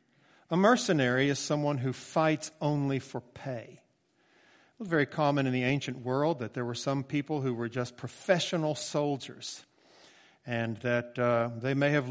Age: 50-69